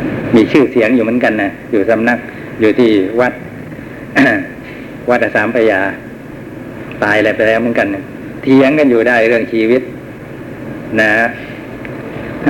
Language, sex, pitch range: Thai, male, 115-140 Hz